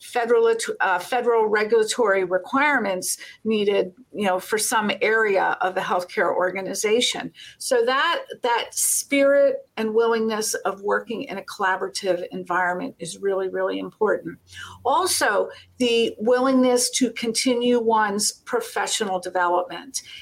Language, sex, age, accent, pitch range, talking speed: English, female, 50-69, American, 200-260 Hz, 115 wpm